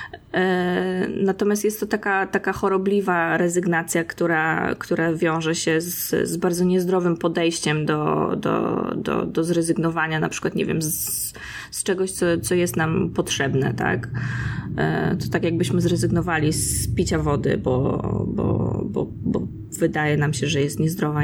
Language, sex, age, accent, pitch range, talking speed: Polish, female, 20-39, native, 165-200 Hz, 145 wpm